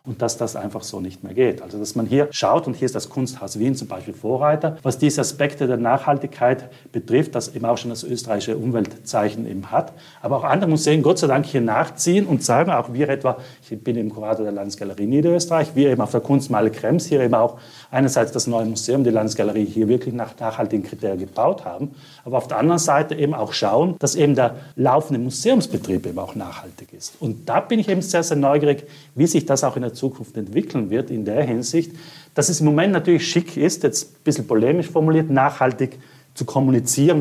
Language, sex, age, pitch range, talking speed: German, male, 40-59, 120-150 Hz, 215 wpm